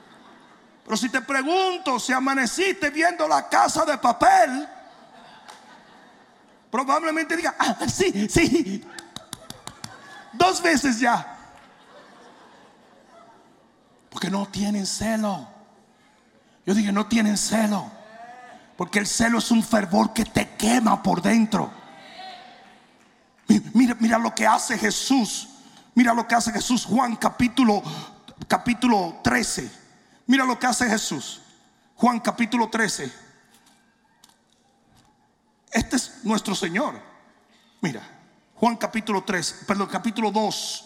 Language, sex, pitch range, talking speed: Spanish, male, 210-265 Hz, 110 wpm